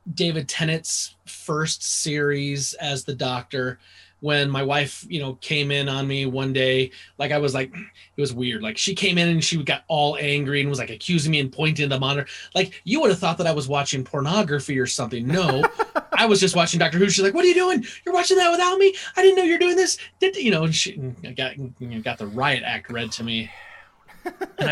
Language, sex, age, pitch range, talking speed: English, male, 30-49, 130-175 Hz, 235 wpm